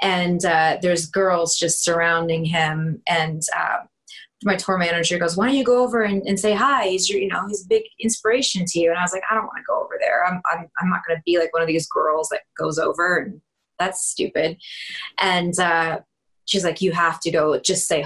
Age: 20-39